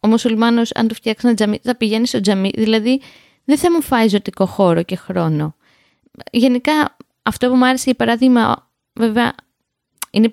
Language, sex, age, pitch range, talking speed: Greek, female, 20-39, 210-265 Hz, 170 wpm